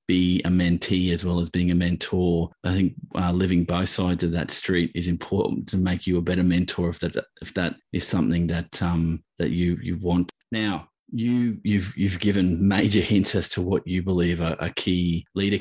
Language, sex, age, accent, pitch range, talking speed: English, male, 20-39, Australian, 85-95 Hz, 210 wpm